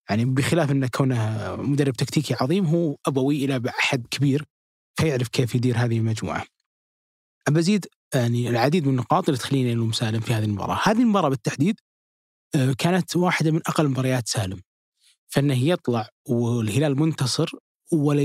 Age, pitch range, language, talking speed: 20-39, 125-150 Hz, Arabic, 145 wpm